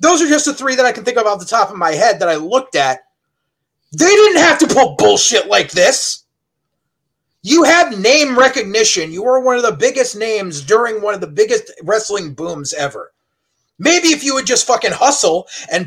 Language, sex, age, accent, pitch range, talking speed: English, male, 30-49, American, 205-325 Hz, 210 wpm